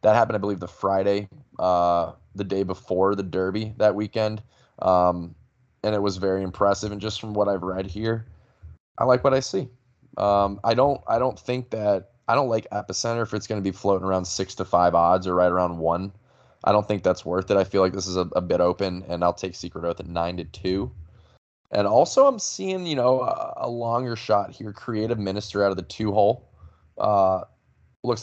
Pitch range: 90-105 Hz